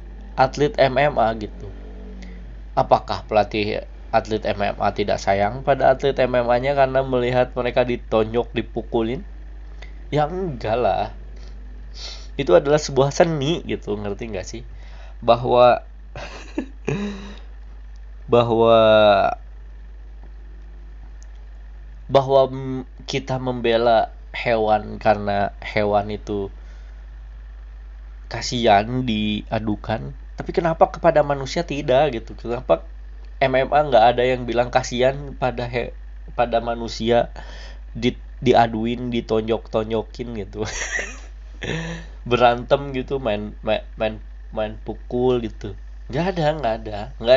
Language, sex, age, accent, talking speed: Indonesian, male, 20-39, native, 90 wpm